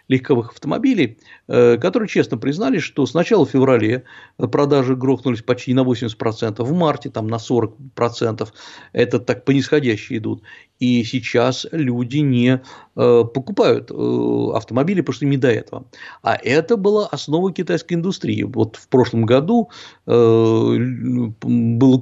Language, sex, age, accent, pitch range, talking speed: Russian, male, 50-69, native, 115-160 Hz, 125 wpm